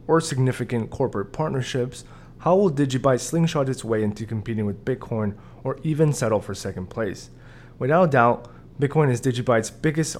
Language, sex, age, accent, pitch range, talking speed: English, male, 20-39, American, 110-145 Hz, 160 wpm